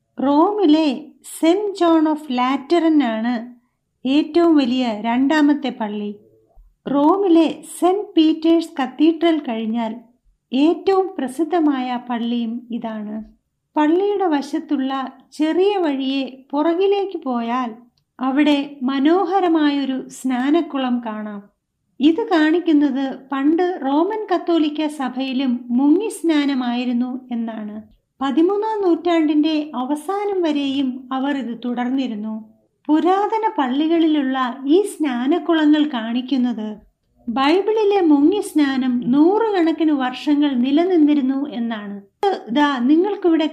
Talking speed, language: 80 wpm, Malayalam